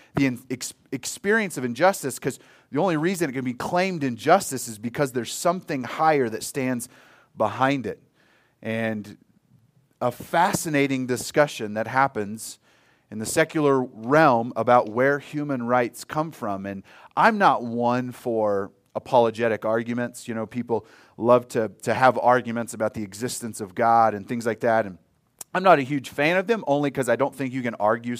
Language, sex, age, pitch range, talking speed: English, male, 30-49, 115-145 Hz, 165 wpm